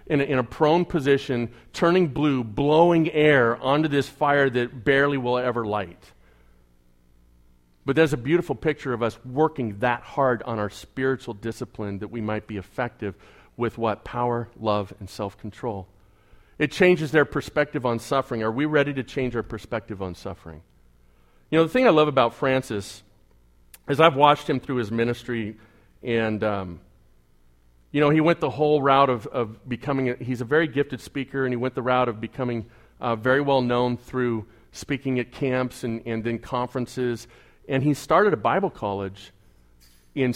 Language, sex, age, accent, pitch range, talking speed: English, male, 40-59, American, 100-135 Hz, 170 wpm